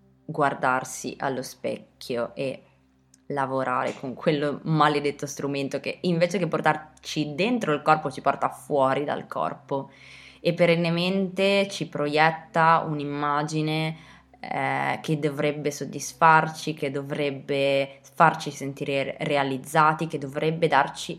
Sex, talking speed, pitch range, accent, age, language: female, 110 wpm, 145-175 Hz, native, 20-39, Italian